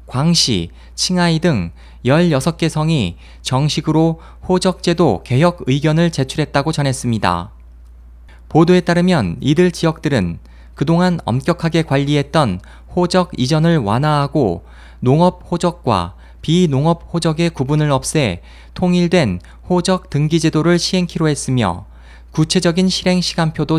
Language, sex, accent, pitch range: Korean, male, native, 100-170 Hz